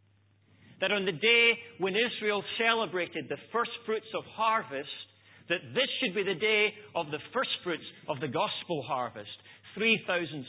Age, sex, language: 40-59, male, English